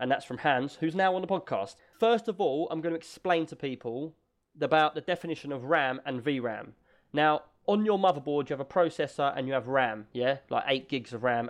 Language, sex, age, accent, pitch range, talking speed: English, male, 20-39, British, 135-170 Hz, 225 wpm